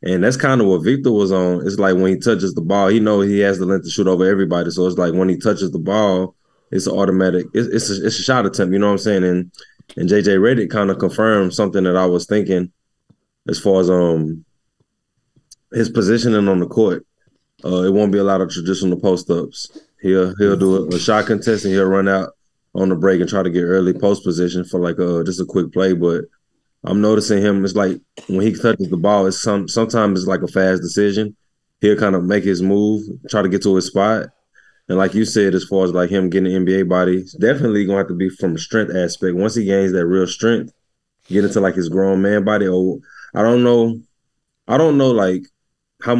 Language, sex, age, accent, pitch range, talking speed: English, male, 20-39, American, 90-105 Hz, 235 wpm